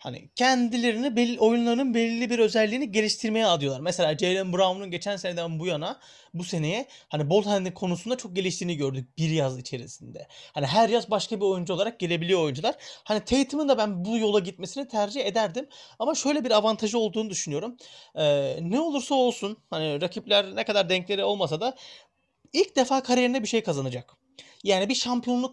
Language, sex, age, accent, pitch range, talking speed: Turkish, male, 30-49, native, 180-250 Hz, 165 wpm